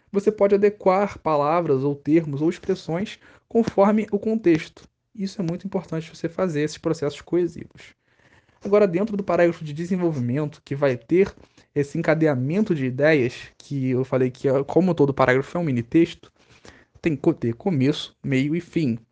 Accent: Brazilian